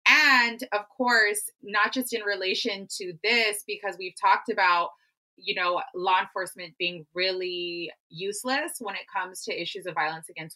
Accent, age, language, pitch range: American, 20-39, English, 165-215 Hz